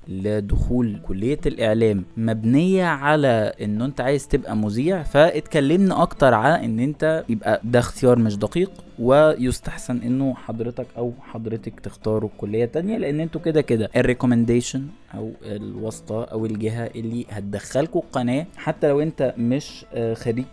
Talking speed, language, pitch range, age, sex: 130 wpm, Arabic, 110-150 Hz, 20-39, male